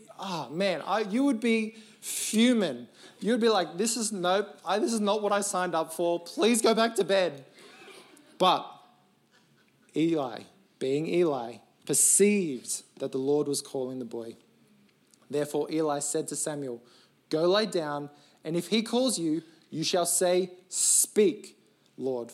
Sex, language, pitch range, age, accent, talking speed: male, English, 140-195 Hz, 20-39, Australian, 155 wpm